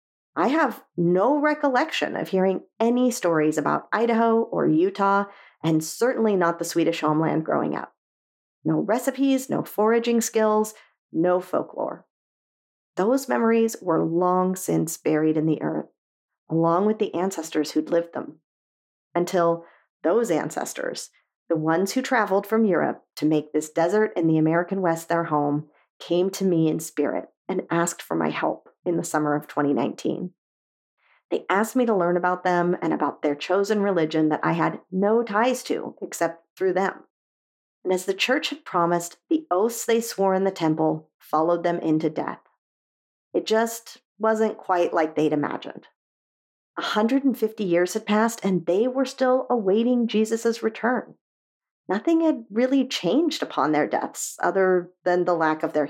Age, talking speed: 40-59, 155 wpm